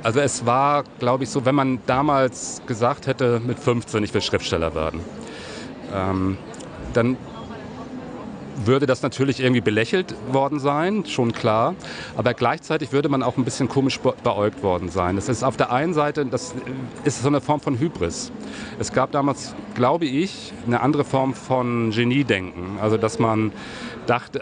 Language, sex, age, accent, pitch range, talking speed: German, male, 40-59, German, 105-135 Hz, 160 wpm